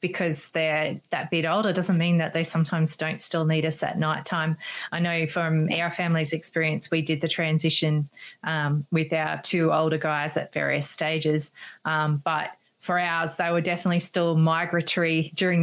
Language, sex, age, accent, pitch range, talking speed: English, female, 20-39, Australian, 155-175 Hz, 175 wpm